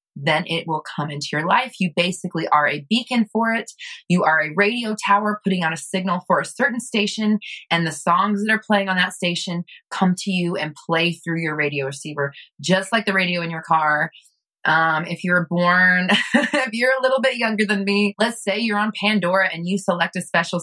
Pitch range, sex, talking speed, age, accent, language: 165-210 Hz, female, 215 wpm, 20-39, American, English